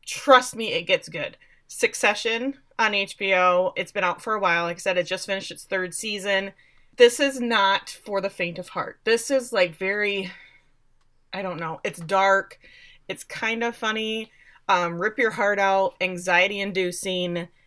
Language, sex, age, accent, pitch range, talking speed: English, female, 20-39, American, 175-210 Hz, 170 wpm